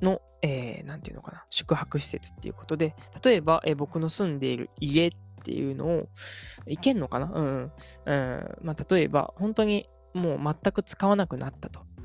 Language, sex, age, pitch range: Japanese, female, 20-39, 125-180 Hz